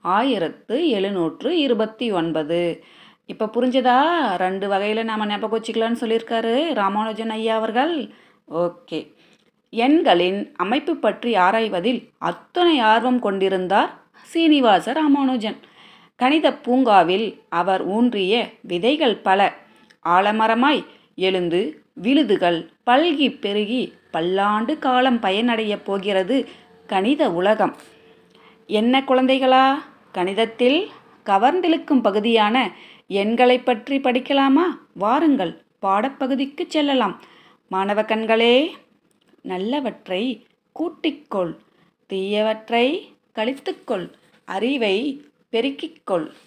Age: 20-39